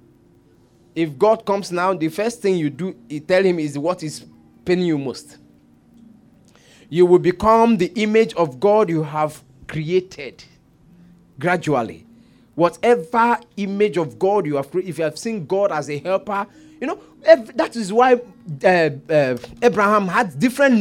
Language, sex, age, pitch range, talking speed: English, male, 30-49, 180-295 Hz, 160 wpm